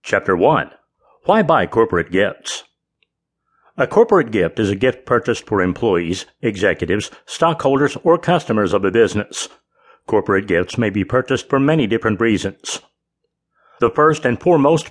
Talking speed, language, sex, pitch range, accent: 140 wpm, English, male, 100-145 Hz, American